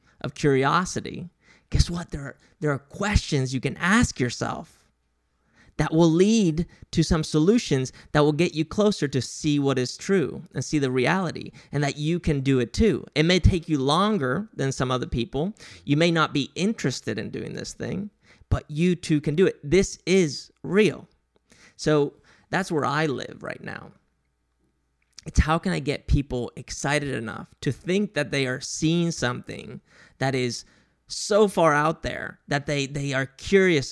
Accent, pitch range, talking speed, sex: American, 125-165 Hz, 175 wpm, male